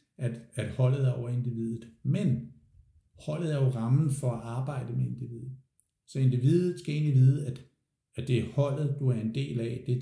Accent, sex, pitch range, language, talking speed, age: native, male, 115-130 Hz, Danish, 200 wpm, 60-79